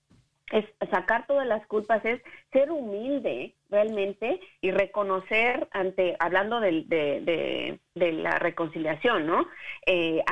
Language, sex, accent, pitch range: Spanish, female, Mexican, 190-270 Hz